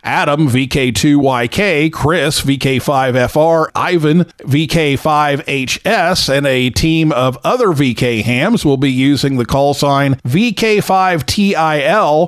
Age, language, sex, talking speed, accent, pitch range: 50-69, English, male, 100 wpm, American, 125-165 Hz